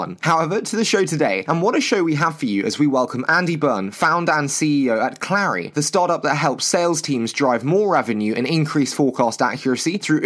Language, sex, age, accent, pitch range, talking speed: English, male, 20-39, British, 130-175 Hz, 215 wpm